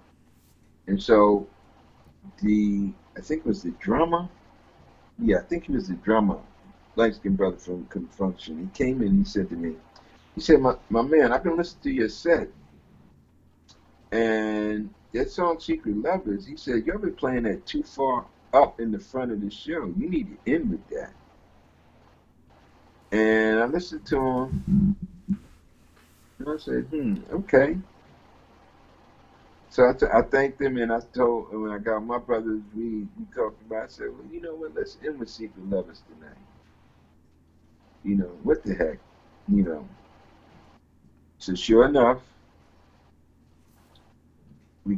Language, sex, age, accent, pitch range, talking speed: English, male, 60-79, American, 80-115 Hz, 155 wpm